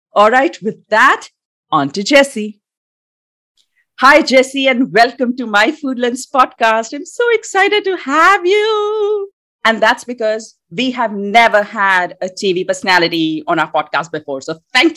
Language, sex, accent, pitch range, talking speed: English, female, Indian, 165-245 Hz, 150 wpm